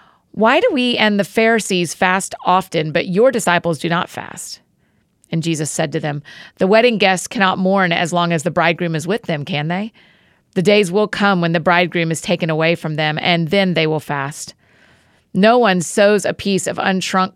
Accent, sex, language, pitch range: American, female, English, 165-195 Hz